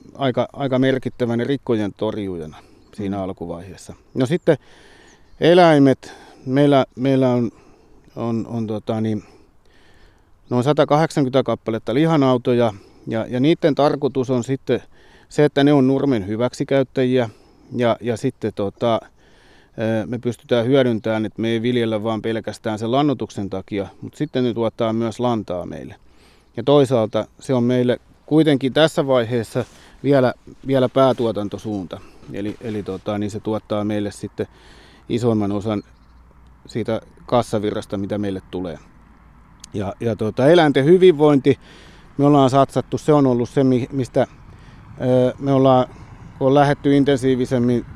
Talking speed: 125 wpm